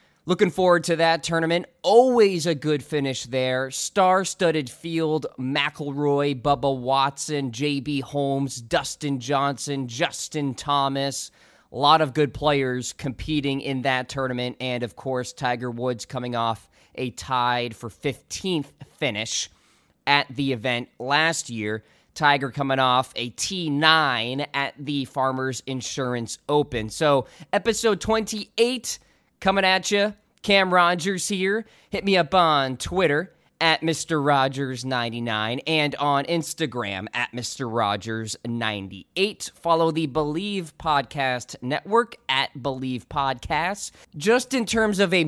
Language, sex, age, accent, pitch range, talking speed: English, male, 20-39, American, 130-165 Hz, 125 wpm